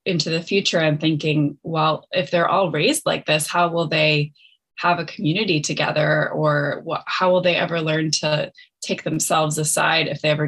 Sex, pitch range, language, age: female, 150-180 Hz, English, 20-39